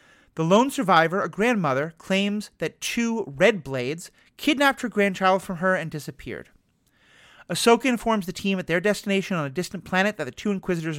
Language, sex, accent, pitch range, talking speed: English, male, American, 155-210 Hz, 175 wpm